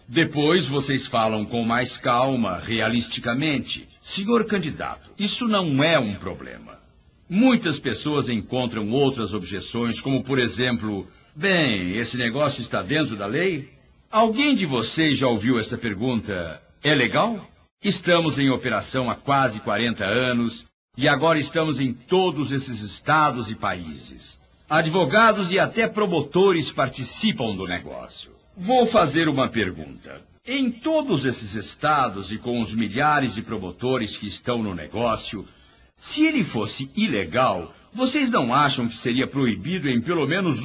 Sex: male